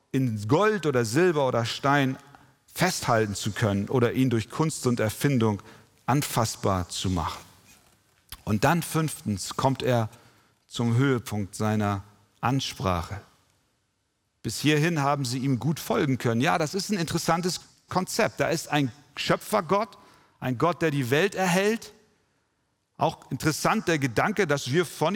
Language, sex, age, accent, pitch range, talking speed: German, male, 40-59, German, 110-160 Hz, 140 wpm